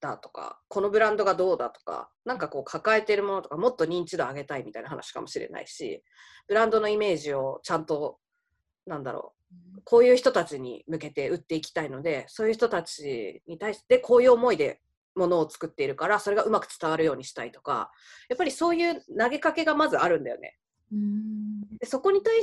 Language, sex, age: Japanese, female, 20-39